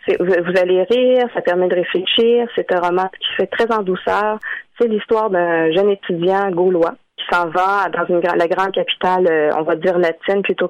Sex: female